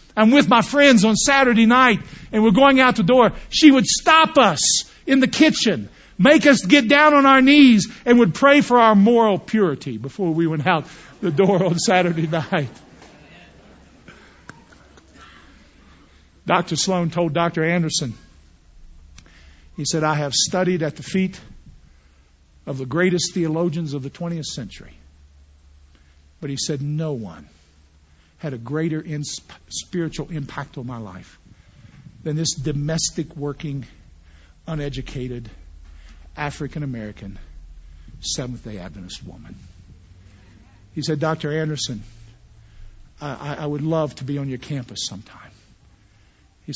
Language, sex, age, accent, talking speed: English, male, 50-69, American, 130 wpm